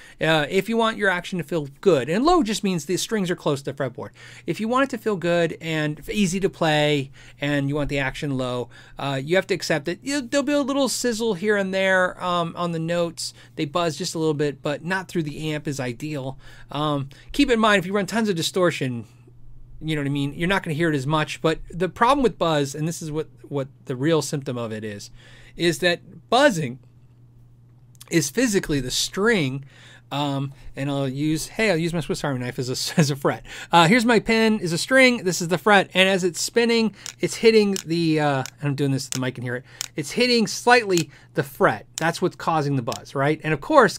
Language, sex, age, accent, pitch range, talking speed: English, male, 30-49, American, 135-190 Hz, 235 wpm